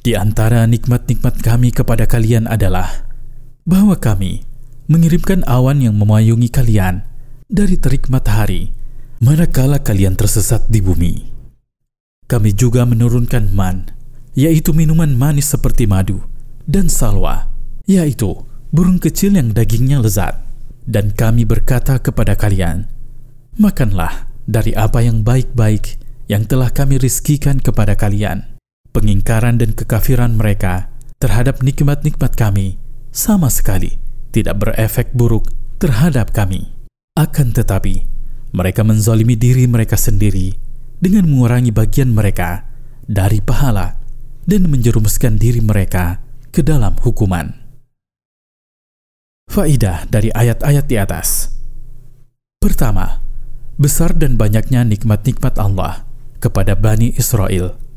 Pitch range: 110-130 Hz